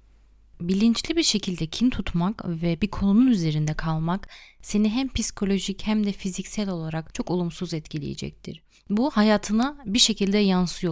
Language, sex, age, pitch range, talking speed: Turkish, female, 30-49, 165-215 Hz, 135 wpm